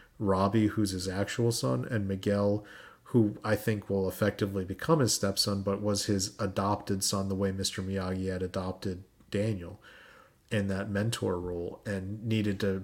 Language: English